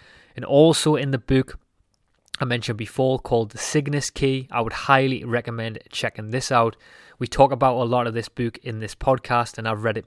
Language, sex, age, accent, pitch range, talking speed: English, male, 20-39, British, 115-135 Hz, 205 wpm